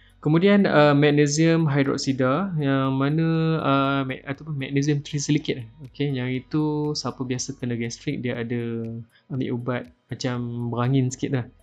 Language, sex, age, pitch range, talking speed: Malay, male, 20-39, 125-150 Hz, 130 wpm